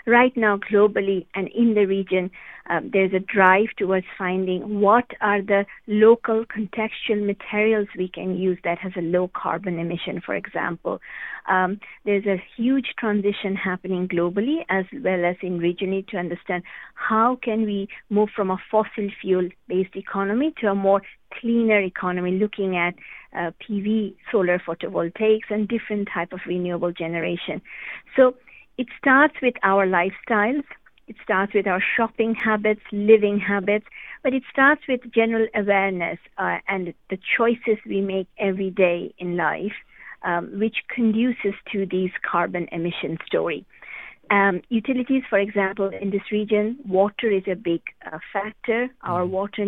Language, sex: Hindi, female